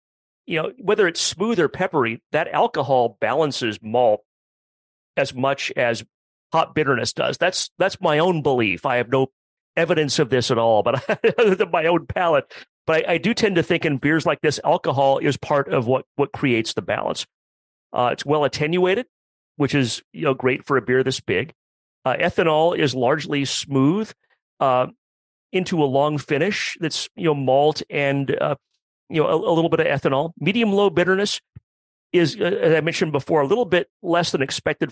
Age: 40-59